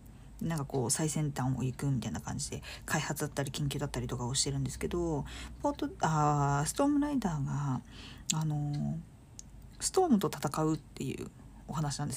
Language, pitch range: Japanese, 135-195 Hz